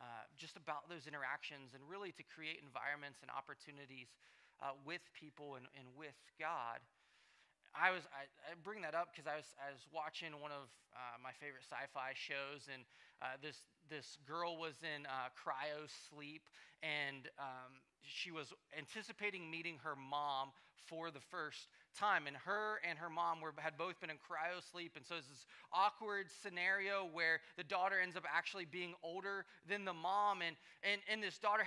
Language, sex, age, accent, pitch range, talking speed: English, male, 20-39, American, 145-205 Hz, 180 wpm